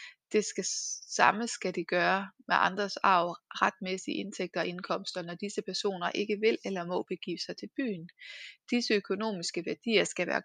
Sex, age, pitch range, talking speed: female, 20-39, 185-225 Hz, 160 wpm